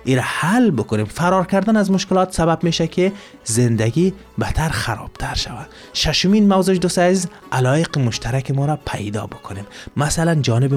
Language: Persian